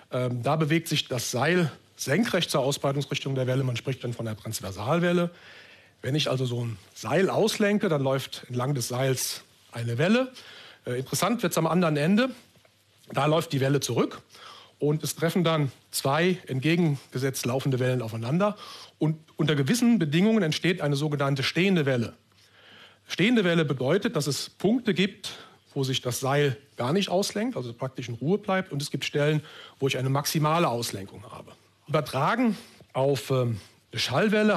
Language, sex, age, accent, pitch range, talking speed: German, male, 40-59, German, 125-175 Hz, 160 wpm